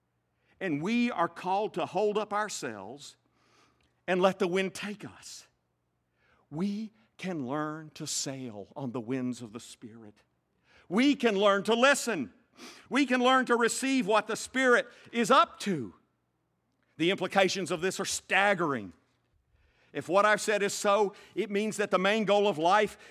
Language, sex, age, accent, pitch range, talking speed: English, male, 50-69, American, 180-240 Hz, 160 wpm